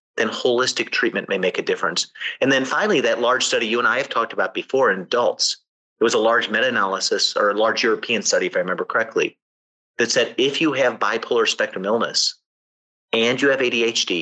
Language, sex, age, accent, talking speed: English, male, 30-49, American, 205 wpm